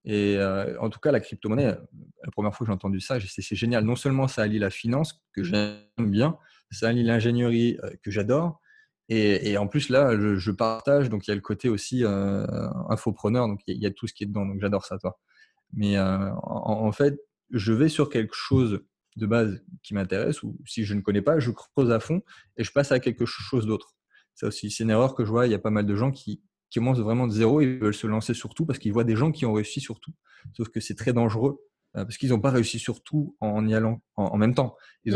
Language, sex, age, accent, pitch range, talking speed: French, male, 20-39, French, 105-130 Hz, 260 wpm